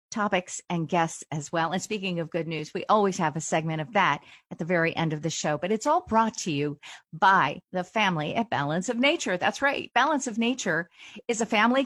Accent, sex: American, female